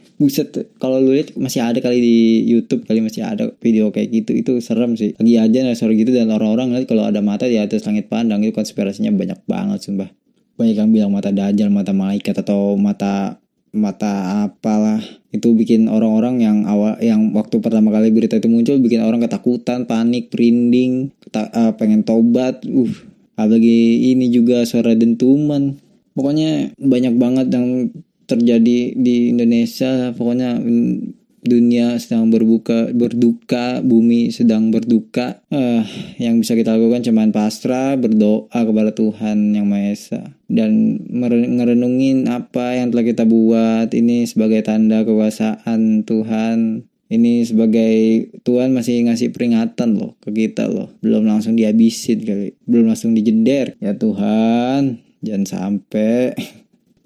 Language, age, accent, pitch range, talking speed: Indonesian, 20-39, native, 110-130 Hz, 145 wpm